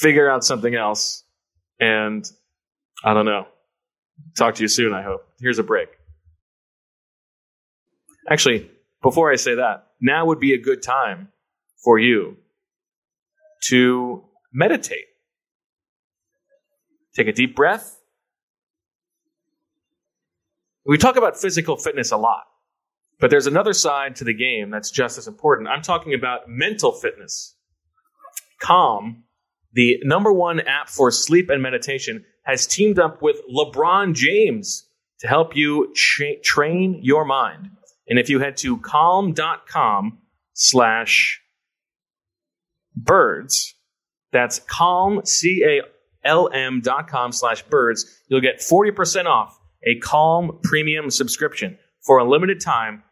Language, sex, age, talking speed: English, male, 20-39, 120 wpm